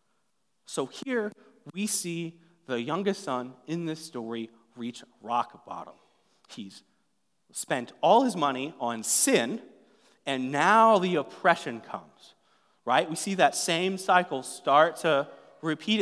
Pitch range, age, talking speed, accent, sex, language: 135-180 Hz, 30-49, 125 wpm, American, male, English